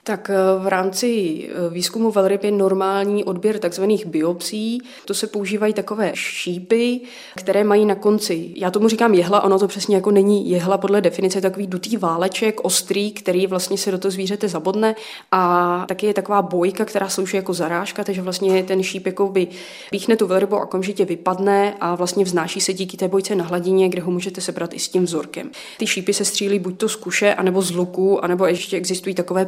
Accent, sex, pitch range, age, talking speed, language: native, female, 185-205 Hz, 20-39, 195 wpm, Czech